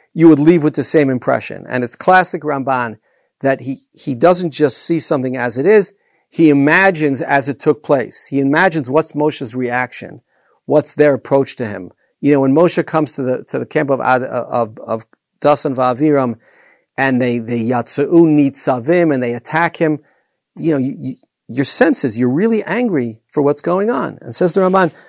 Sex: male